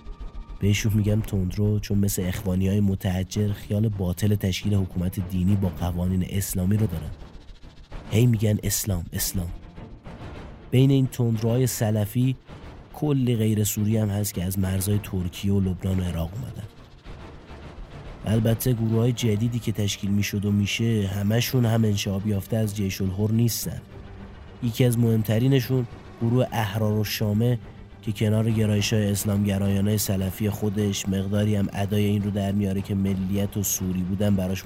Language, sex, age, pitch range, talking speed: Persian, male, 30-49, 95-115 Hz, 145 wpm